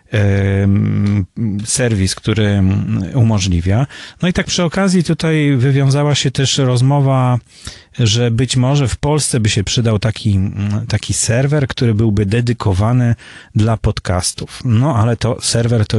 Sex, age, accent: male, 30-49, native